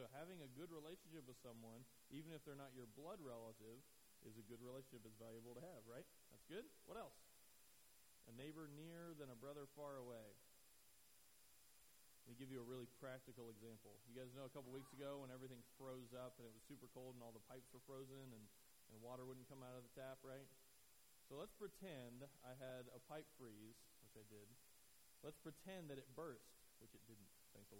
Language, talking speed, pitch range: English, 205 wpm, 120-145 Hz